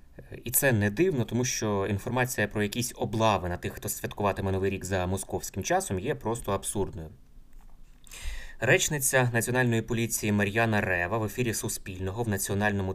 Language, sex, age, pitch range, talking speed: Ukrainian, male, 20-39, 95-120 Hz, 150 wpm